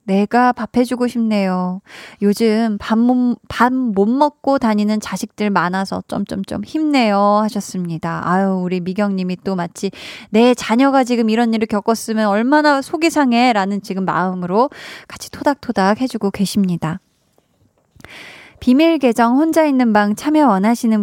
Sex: female